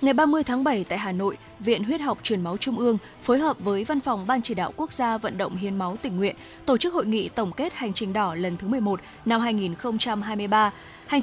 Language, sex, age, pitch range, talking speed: Vietnamese, female, 20-39, 200-250 Hz, 240 wpm